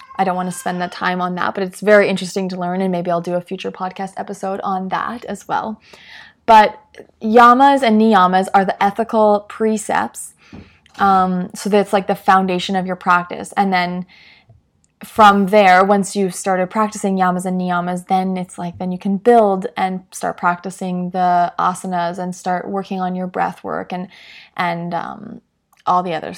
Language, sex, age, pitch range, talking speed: English, female, 20-39, 180-205 Hz, 180 wpm